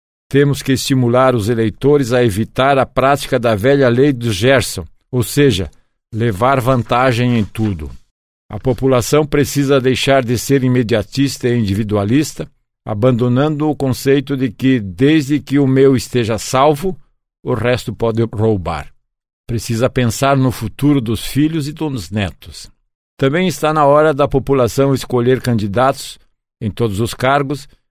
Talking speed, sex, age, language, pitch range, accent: 140 wpm, male, 60-79, Portuguese, 115-140 Hz, Brazilian